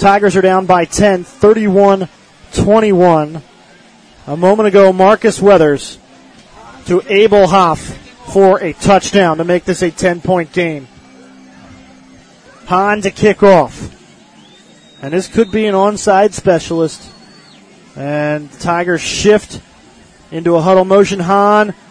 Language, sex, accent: English, male, American